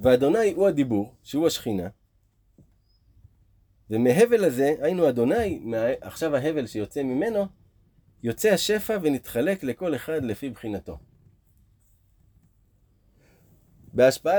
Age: 30-49